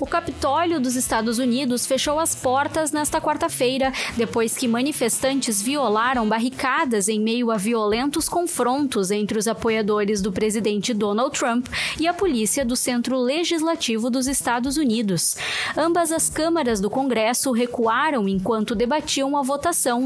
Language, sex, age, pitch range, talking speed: Portuguese, female, 20-39, 225-300 Hz, 140 wpm